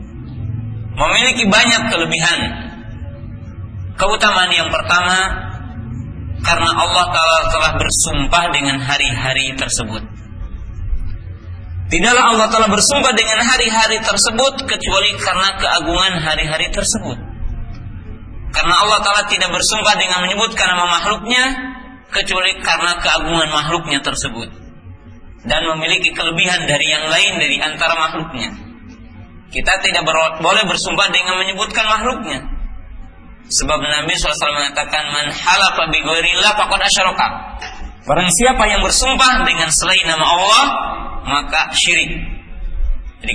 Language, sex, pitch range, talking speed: Malay, male, 115-190 Hz, 100 wpm